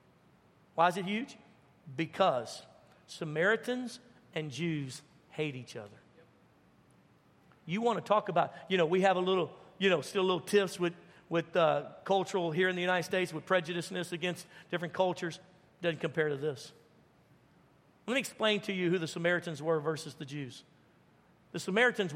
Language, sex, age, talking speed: English, male, 50-69, 165 wpm